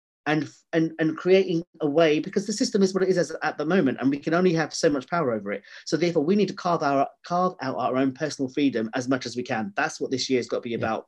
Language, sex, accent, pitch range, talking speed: English, male, British, 130-165 Hz, 285 wpm